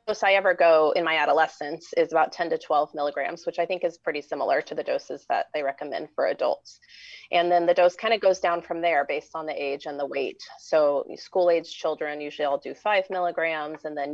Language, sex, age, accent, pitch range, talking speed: English, female, 30-49, American, 150-190 Hz, 230 wpm